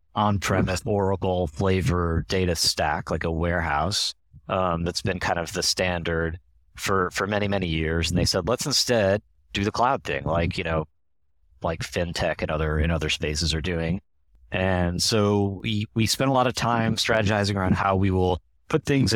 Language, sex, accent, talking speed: English, male, American, 180 wpm